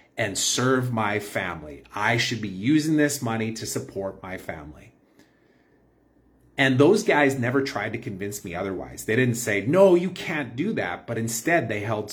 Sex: male